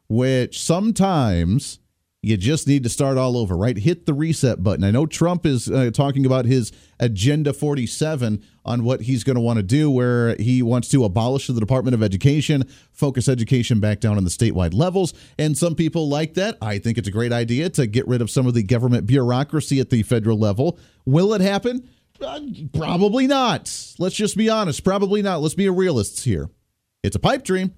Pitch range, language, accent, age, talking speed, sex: 115-155 Hz, English, American, 40-59, 200 wpm, male